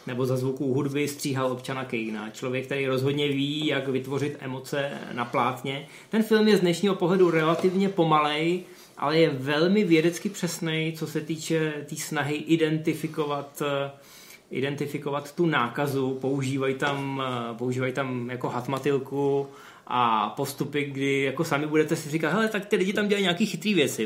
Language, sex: Czech, male